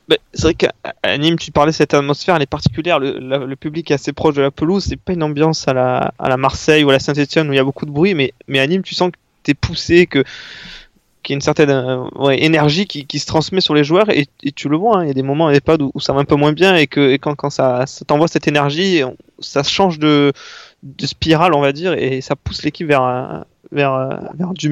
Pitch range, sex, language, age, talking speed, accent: 135-155 Hz, male, French, 20-39, 285 wpm, French